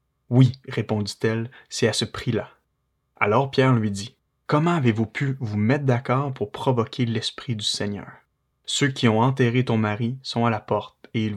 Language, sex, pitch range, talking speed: French, male, 110-125 Hz, 190 wpm